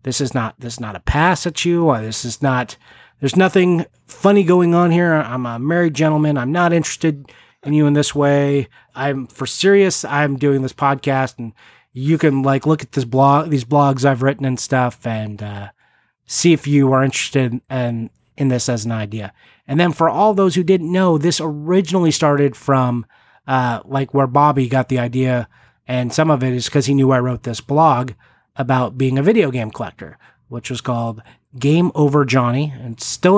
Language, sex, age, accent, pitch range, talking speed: English, male, 30-49, American, 125-150 Hz, 200 wpm